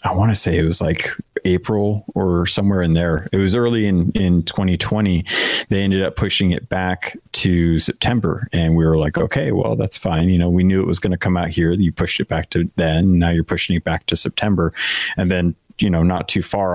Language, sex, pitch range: English, male, 85-95 Hz